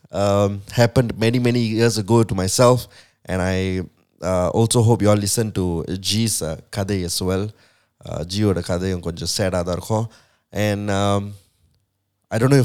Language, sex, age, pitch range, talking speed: English, male, 20-39, 95-125 Hz, 150 wpm